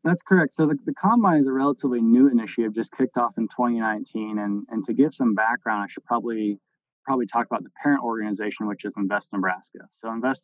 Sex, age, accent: male, 20-39, American